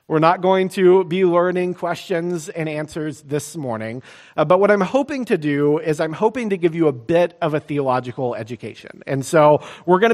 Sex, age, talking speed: male, 40-59, 200 wpm